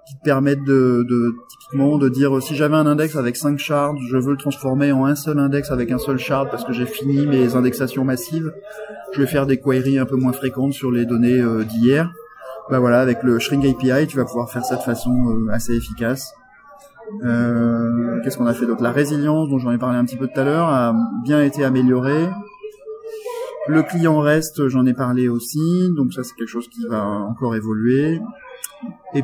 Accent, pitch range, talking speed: French, 125-155 Hz, 210 wpm